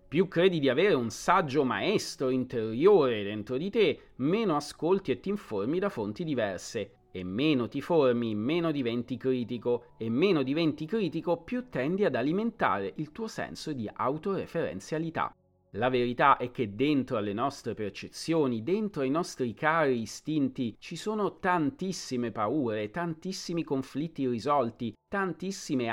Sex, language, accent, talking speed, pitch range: male, Italian, native, 140 wpm, 120-170 Hz